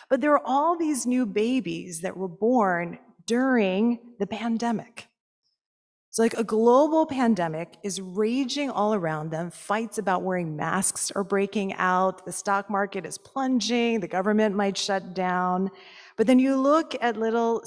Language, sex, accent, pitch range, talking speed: English, female, American, 185-240 Hz, 155 wpm